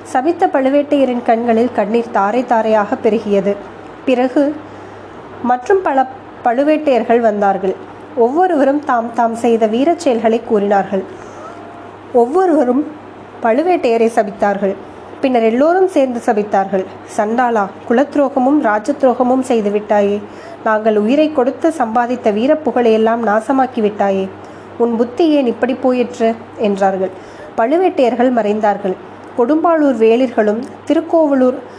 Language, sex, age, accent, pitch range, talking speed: Tamil, female, 20-39, native, 225-285 Hz, 95 wpm